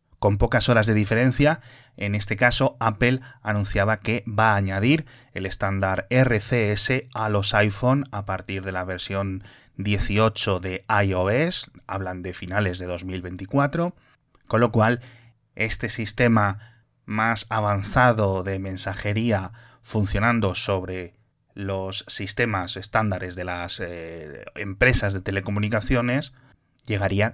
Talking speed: 120 wpm